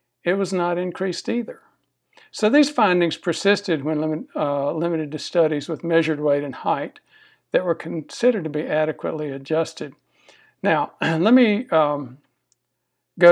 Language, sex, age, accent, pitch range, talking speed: English, male, 60-79, American, 155-185 Hz, 140 wpm